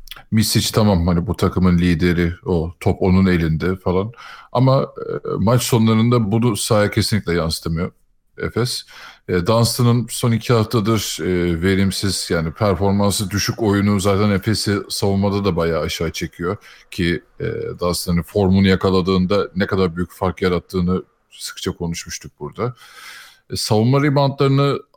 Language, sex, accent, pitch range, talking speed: Turkish, male, native, 95-120 Hz, 130 wpm